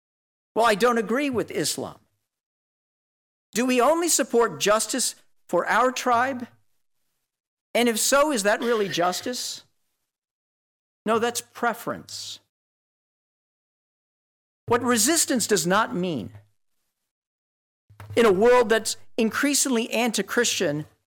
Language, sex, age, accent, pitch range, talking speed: English, male, 50-69, American, 180-240 Hz, 100 wpm